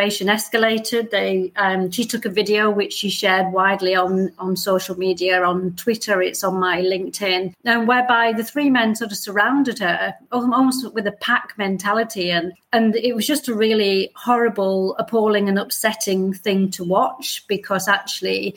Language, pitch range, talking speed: English, 190-230 Hz, 165 wpm